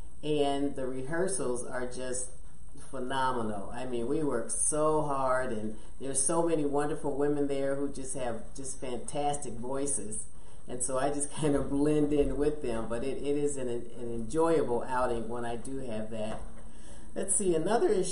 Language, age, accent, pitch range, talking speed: English, 40-59, American, 115-145 Hz, 170 wpm